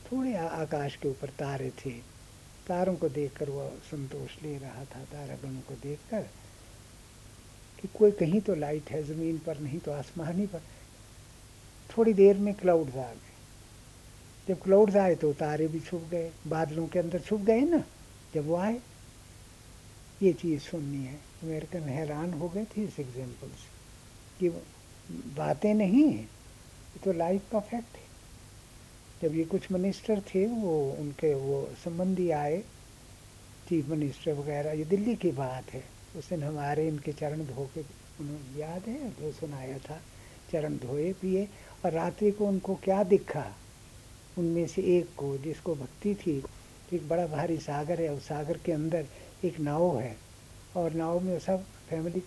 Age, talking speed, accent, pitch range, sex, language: 60-79, 155 wpm, native, 130-175 Hz, male, Hindi